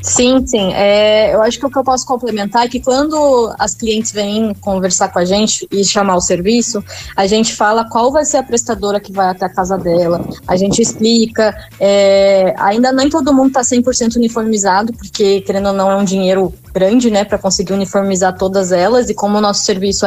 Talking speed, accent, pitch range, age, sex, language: 205 wpm, Brazilian, 200-250 Hz, 20-39, female, Portuguese